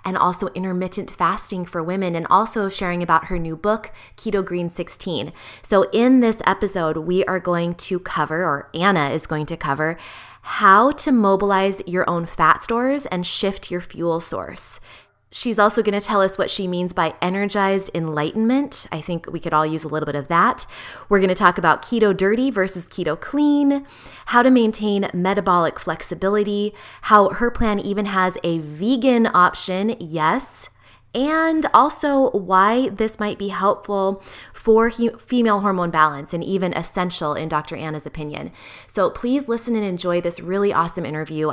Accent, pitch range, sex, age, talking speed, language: American, 165-205 Hz, female, 20-39, 165 wpm, English